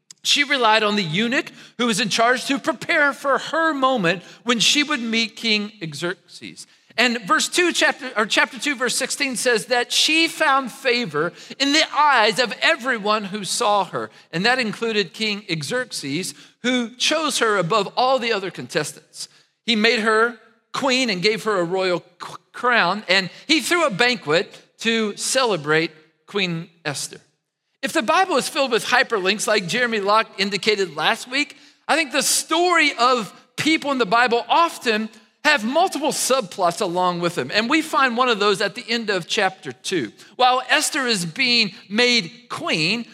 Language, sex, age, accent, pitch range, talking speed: English, male, 40-59, American, 200-275 Hz, 170 wpm